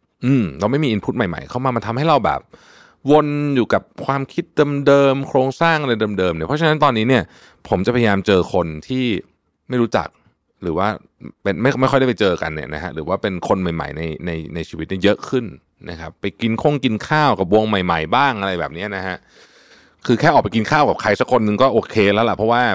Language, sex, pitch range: Thai, male, 90-135 Hz